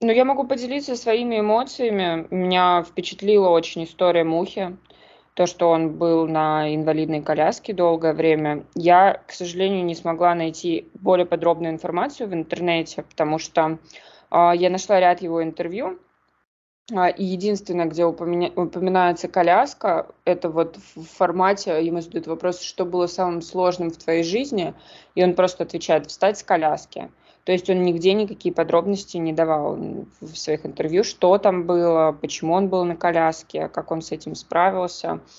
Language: Russian